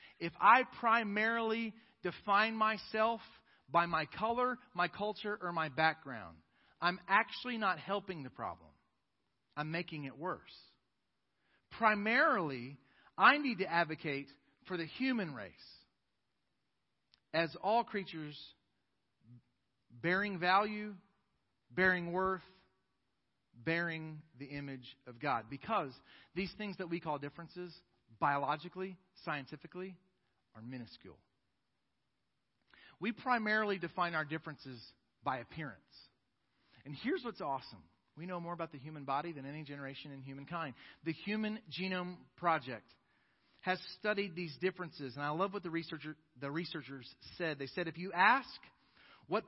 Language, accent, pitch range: English, American, 140-195 Hz